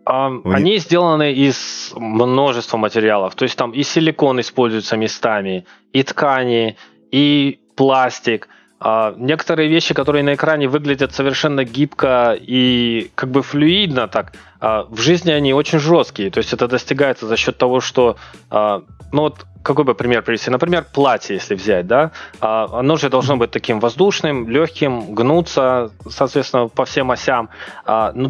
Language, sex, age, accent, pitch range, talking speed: Russian, male, 20-39, native, 115-150 Hz, 140 wpm